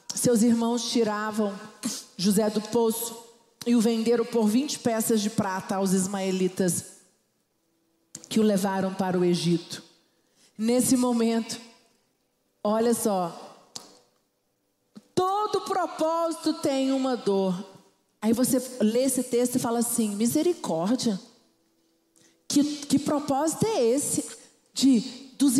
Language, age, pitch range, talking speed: Portuguese, 40-59, 230-350 Hz, 110 wpm